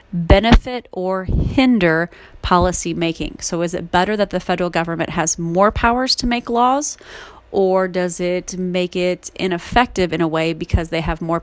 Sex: female